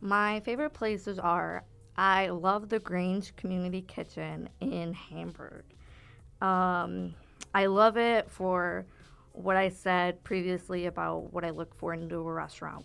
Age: 20-39